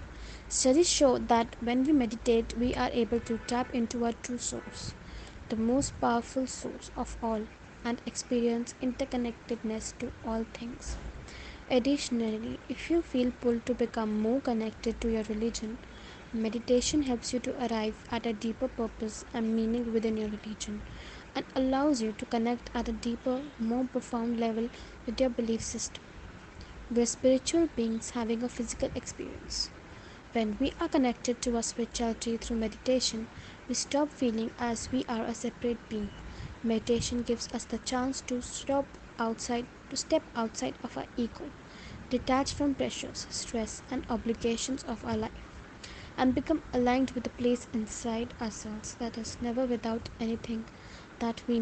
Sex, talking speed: female, 150 wpm